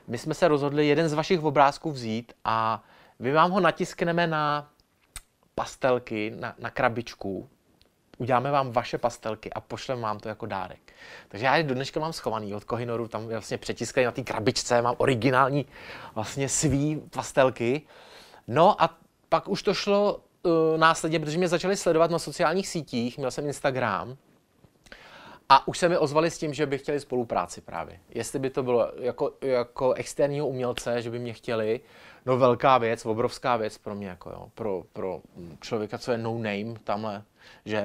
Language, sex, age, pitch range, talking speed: Czech, male, 30-49, 115-155 Hz, 175 wpm